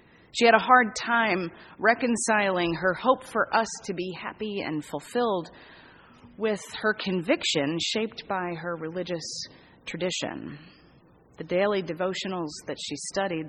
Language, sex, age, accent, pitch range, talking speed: English, female, 30-49, American, 165-225 Hz, 130 wpm